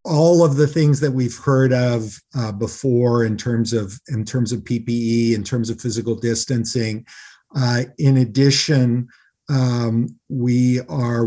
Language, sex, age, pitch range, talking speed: English, male, 50-69, 120-145 Hz, 150 wpm